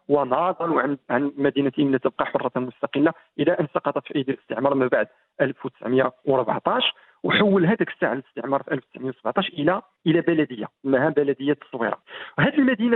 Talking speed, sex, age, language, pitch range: 140 wpm, male, 40-59, Arabic, 140-210 Hz